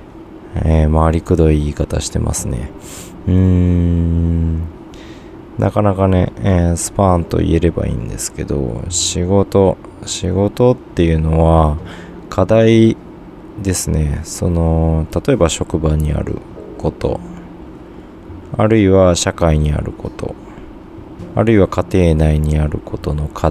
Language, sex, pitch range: Japanese, male, 80-100 Hz